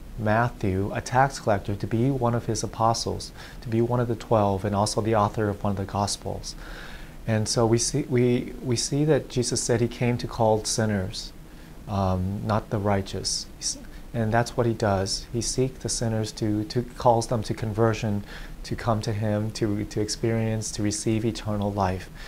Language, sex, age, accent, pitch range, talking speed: English, male, 30-49, American, 105-120 Hz, 190 wpm